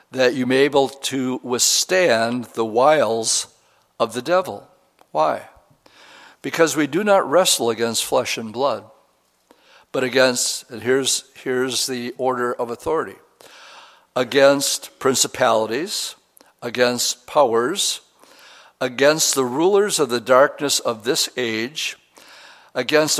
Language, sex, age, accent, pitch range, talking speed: English, male, 60-79, American, 115-135 Hz, 115 wpm